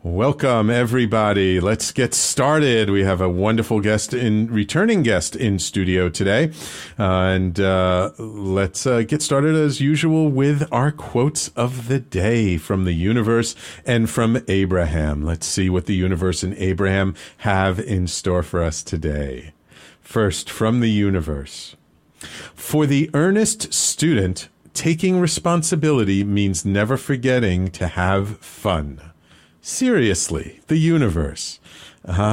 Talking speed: 130 wpm